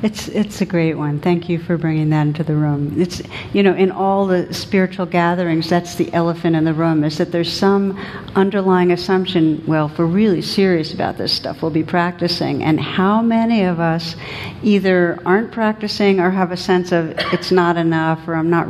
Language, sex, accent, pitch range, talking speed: English, female, American, 160-195 Hz, 200 wpm